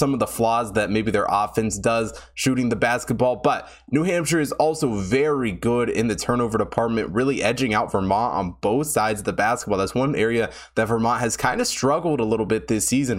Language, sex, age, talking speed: English, male, 20-39, 215 wpm